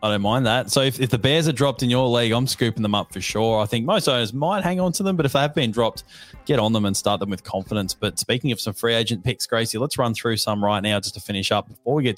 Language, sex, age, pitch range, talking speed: English, male, 20-39, 110-135 Hz, 315 wpm